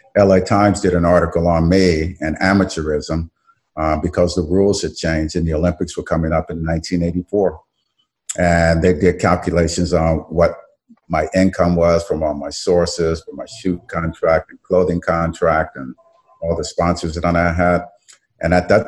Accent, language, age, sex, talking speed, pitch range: American, English, 50-69, male, 170 wpm, 80-90 Hz